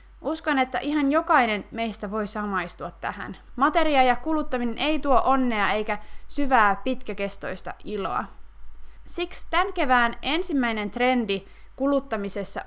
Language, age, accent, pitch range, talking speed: Finnish, 20-39, native, 205-270 Hz, 115 wpm